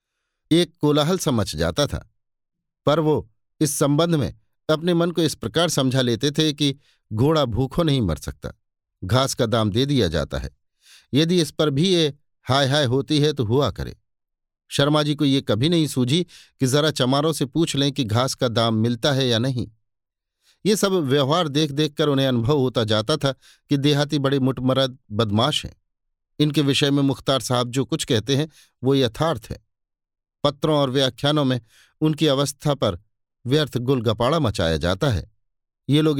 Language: Hindi